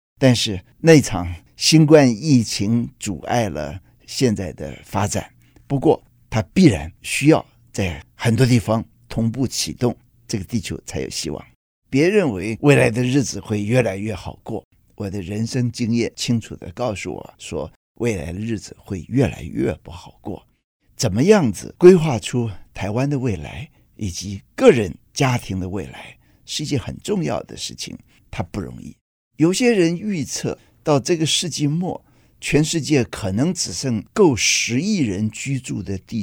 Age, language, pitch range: 50-69, Chinese, 105-150 Hz